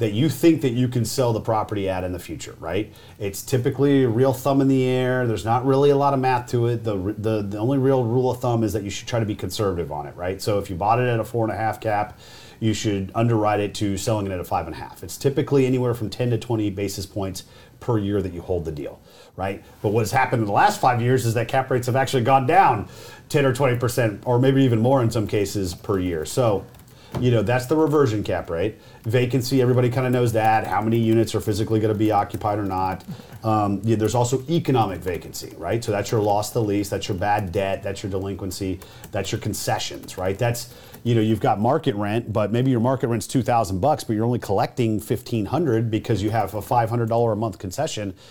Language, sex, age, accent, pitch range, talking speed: English, male, 40-59, American, 105-125 Hz, 235 wpm